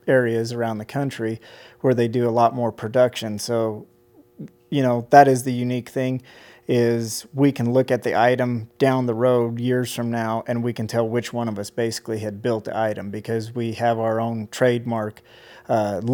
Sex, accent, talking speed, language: male, American, 195 wpm, English